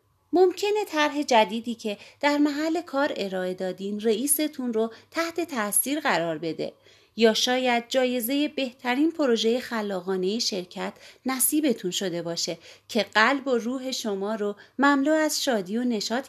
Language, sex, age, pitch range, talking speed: Persian, female, 30-49, 200-280 Hz, 135 wpm